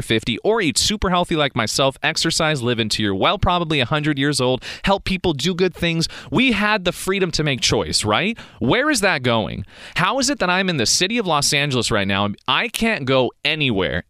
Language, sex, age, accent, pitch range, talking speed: English, male, 30-49, American, 110-170 Hz, 215 wpm